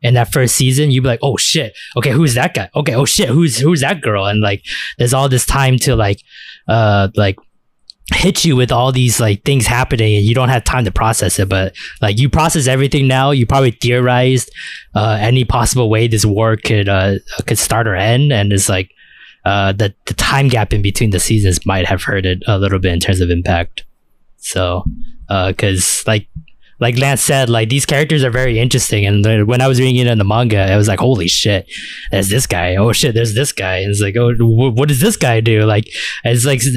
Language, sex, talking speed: English, male, 225 wpm